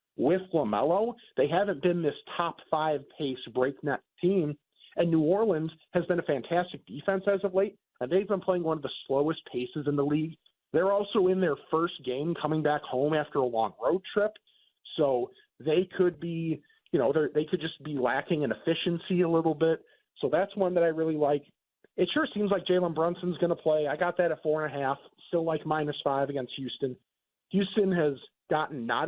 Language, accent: English, American